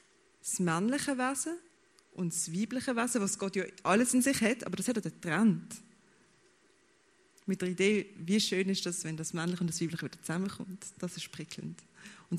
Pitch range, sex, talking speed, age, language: 175-220 Hz, female, 185 wpm, 20-39, German